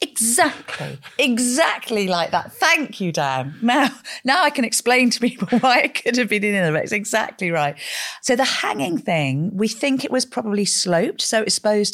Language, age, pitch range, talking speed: English, 40-59, 140-195 Hz, 190 wpm